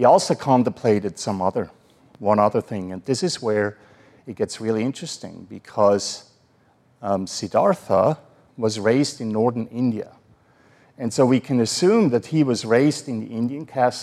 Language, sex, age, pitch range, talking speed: English, male, 50-69, 115-150 Hz, 160 wpm